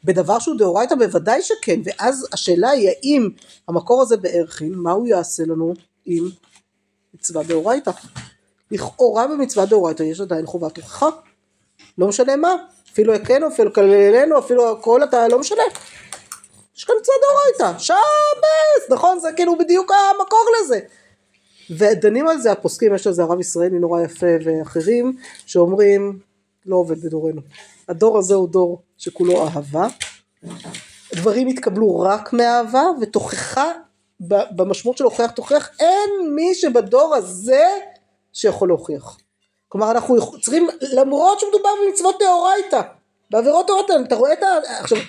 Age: 50-69